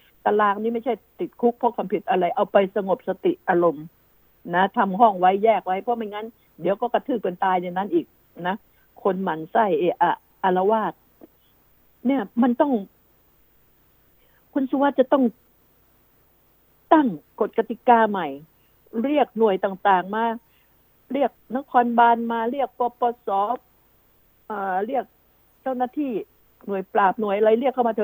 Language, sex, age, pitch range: Thai, female, 60-79, 205-255 Hz